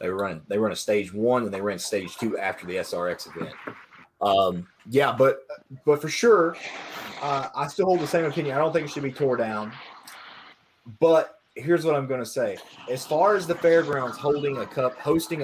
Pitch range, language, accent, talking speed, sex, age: 125-165 Hz, English, American, 205 wpm, male, 30-49